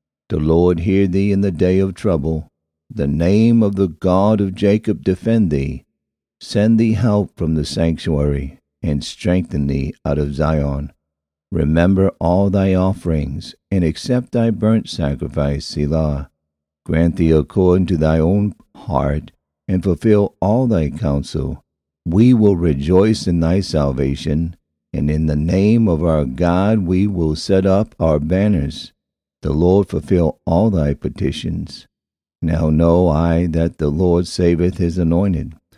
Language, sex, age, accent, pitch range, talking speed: English, male, 50-69, American, 75-95 Hz, 145 wpm